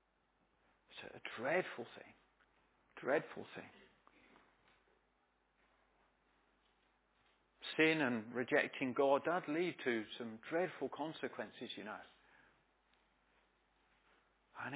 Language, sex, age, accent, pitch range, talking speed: English, male, 50-69, British, 125-185 Hz, 75 wpm